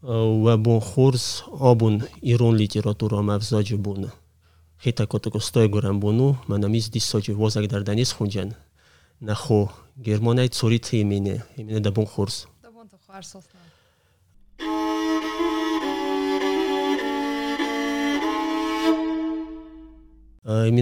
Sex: male